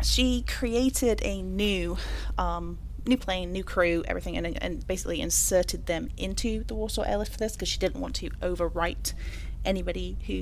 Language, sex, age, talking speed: English, female, 30-49, 165 wpm